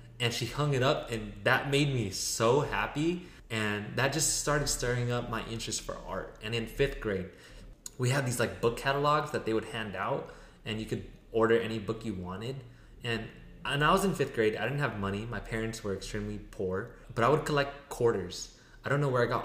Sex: male